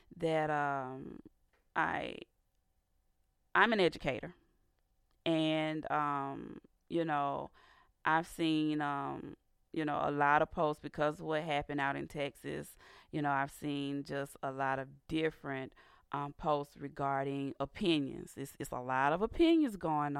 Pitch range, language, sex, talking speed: 145-190 Hz, English, female, 135 wpm